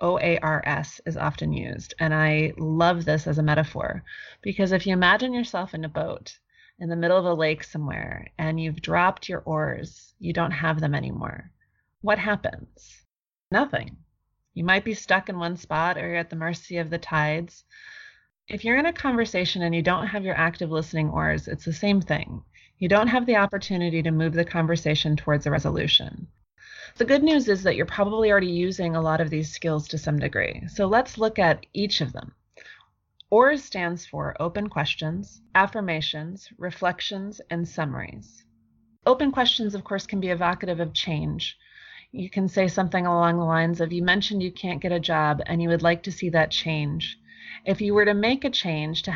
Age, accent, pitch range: 30-49, American, 155-200 Hz